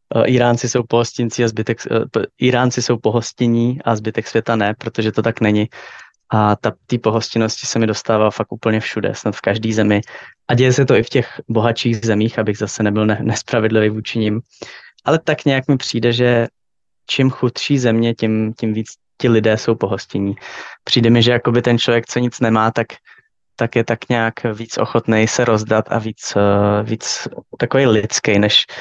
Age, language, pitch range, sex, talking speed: 20-39, Slovak, 105-120 Hz, male, 165 wpm